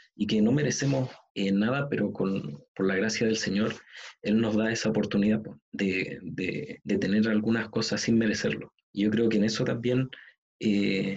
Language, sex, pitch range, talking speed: Spanish, male, 105-120 Hz, 185 wpm